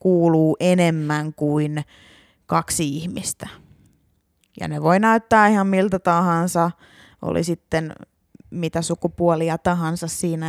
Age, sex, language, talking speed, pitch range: 20-39, female, Finnish, 105 wpm, 170-220 Hz